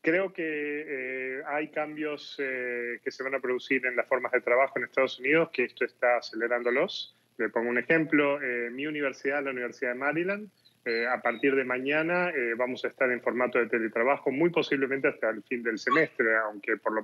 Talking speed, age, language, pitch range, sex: 200 wpm, 20-39, English, 125-155 Hz, male